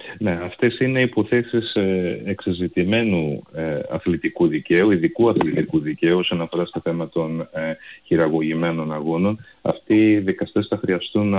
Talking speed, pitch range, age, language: 115 wpm, 85-110 Hz, 30-49, Greek